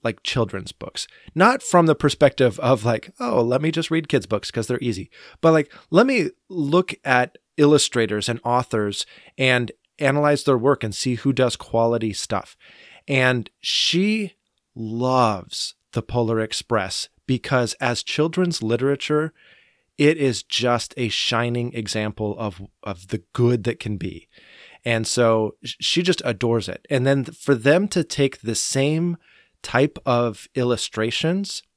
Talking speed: 145 wpm